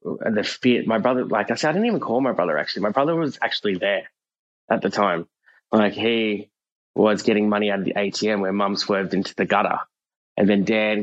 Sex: male